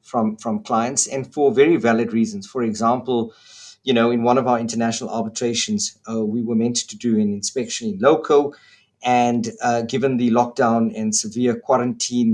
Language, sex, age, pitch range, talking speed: English, male, 50-69, 115-140 Hz, 175 wpm